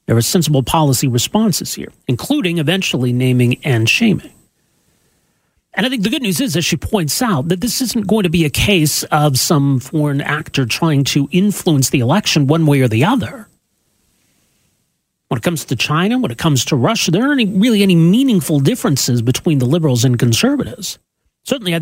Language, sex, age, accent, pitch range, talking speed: English, male, 40-59, American, 130-185 Hz, 185 wpm